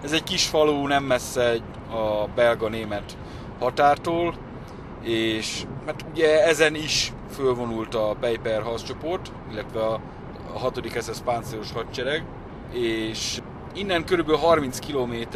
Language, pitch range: Hungarian, 115-145 Hz